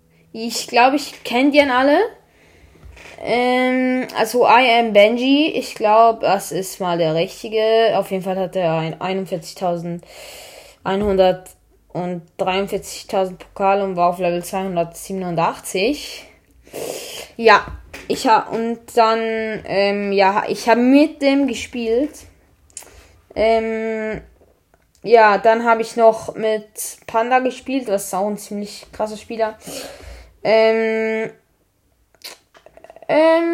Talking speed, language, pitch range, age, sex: 105 wpm, English, 190-275 Hz, 20-39, female